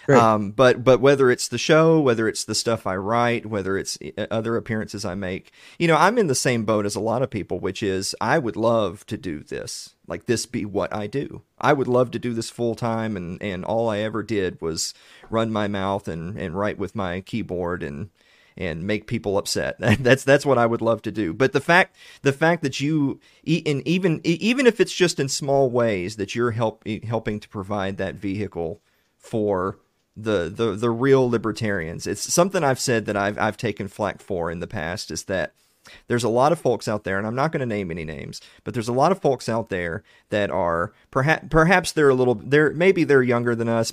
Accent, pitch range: American, 100-135 Hz